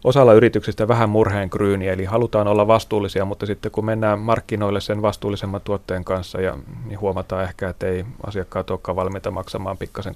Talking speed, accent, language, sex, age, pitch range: 170 wpm, native, Finnish, male, 30-49, 95-110 Hz